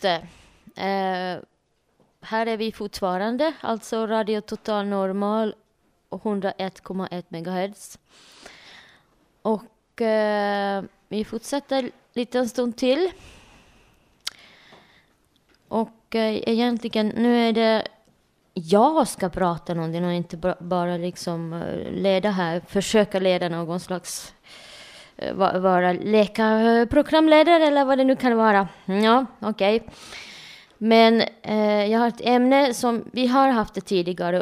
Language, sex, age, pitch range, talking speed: Swedish, female, 20-39, 185-225 Hz, 115 wpm